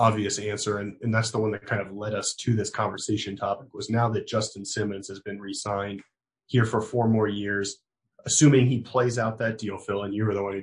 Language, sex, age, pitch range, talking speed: English, male, 30-49, 100-120 Hz, 245 wpm